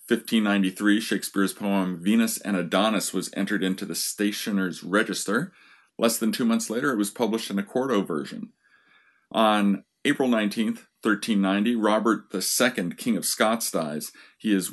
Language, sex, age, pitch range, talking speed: English, male, 40-59, 100-120 Hz, 145 wpm